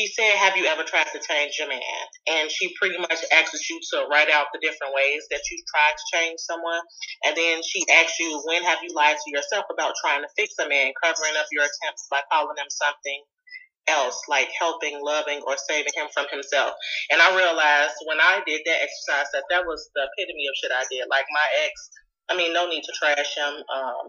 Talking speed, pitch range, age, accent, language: 225 wpm, 150-225 Hz, 30-49, American, English